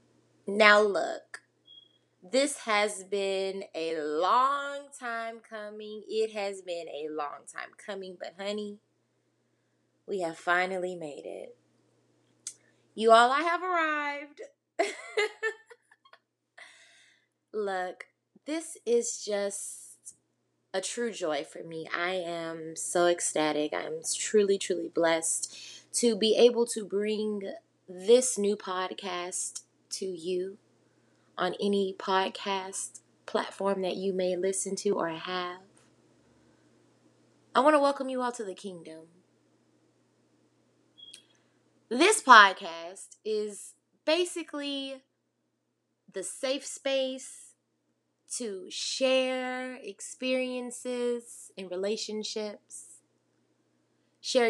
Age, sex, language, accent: 20-39, female, English, American